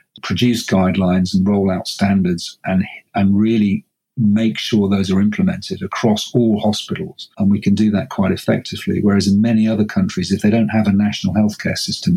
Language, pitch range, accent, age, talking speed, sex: English, 100-120 Hz, British, 40-59, 185 wpm, male